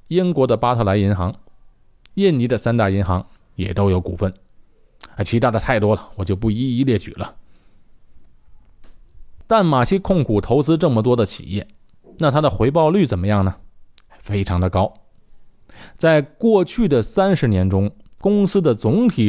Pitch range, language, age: 100-130 Hz, Chinese, 20-39